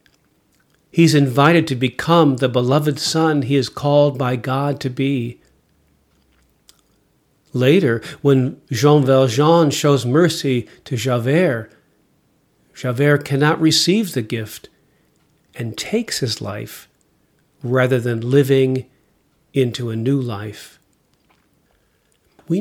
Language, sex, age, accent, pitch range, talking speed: English, male, 50-69, American, 125-160 Hz, 105 wpm